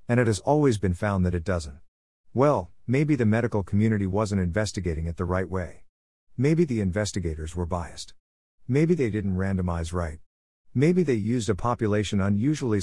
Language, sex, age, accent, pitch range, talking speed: English, male, 50-69, American, 85-110 Hz, 170 wpm